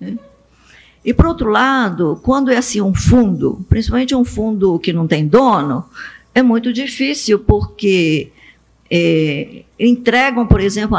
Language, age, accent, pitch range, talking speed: Portuguese, 50-69, Brazilian, 175-240 Hz, 130 wpm